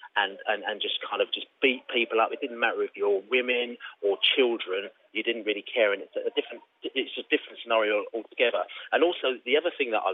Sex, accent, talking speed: male, British, 225 wpm